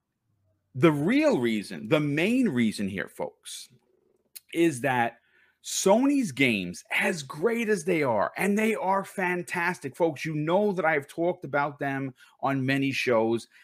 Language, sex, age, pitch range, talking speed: English, male, 40-59, 125-185 Hz, 140 wpm